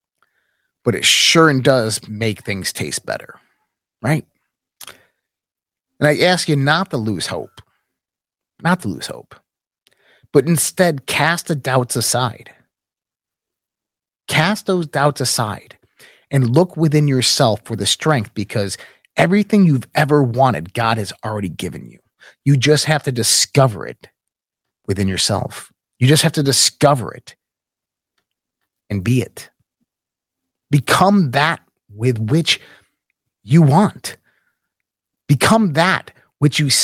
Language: English